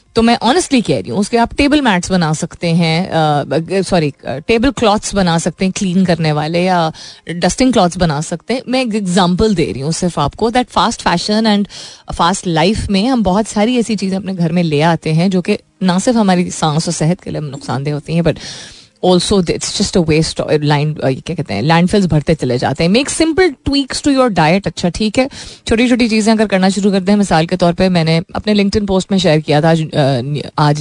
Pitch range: 165-225 Hz